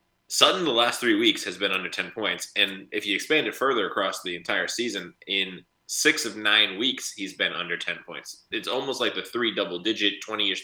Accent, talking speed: American, 210 wpm